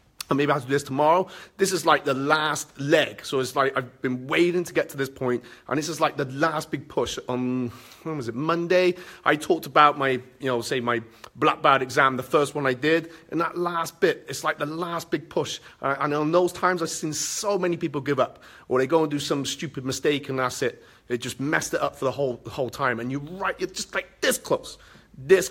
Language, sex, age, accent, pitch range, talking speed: English, male, 30-49, British, 125-160 Hz, 245 wpm